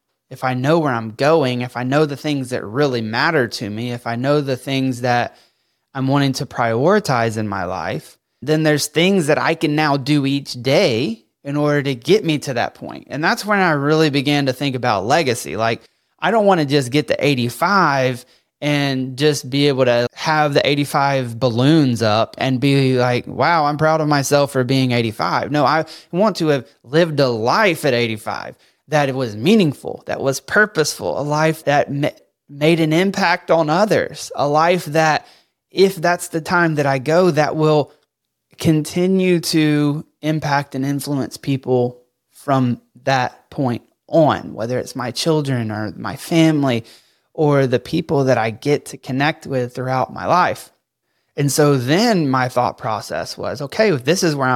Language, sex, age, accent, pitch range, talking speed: English, male, 20-39, American, 130-155 Hz, 185 wpm